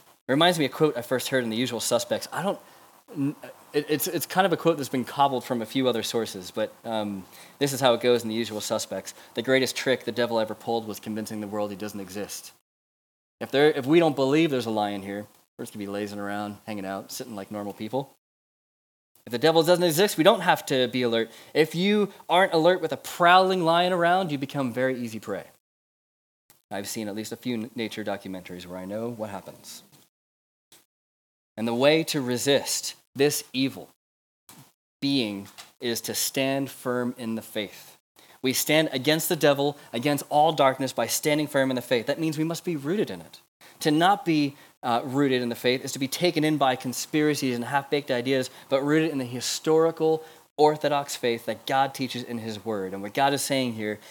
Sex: male